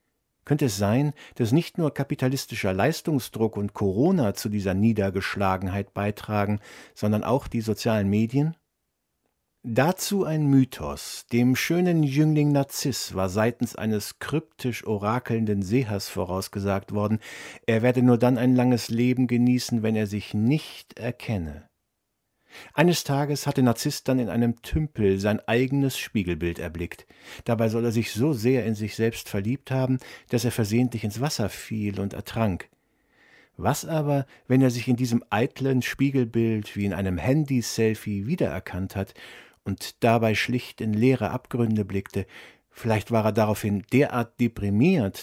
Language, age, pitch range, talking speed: German, 50-69, 105-130 Hz, 140 wpm